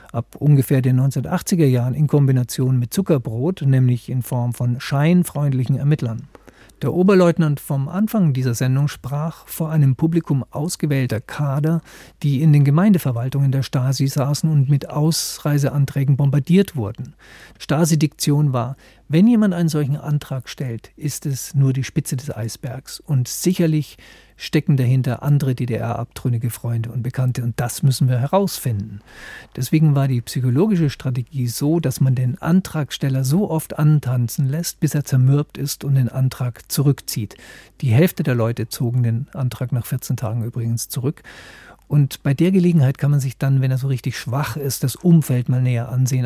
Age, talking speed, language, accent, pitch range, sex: 50-69, 155 wpm, German, German, 130-155 Hz, male